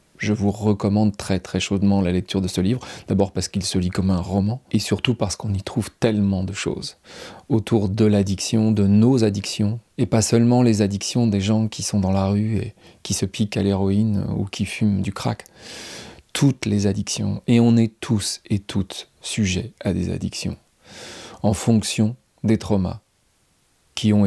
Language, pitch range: French, 100-110 Hz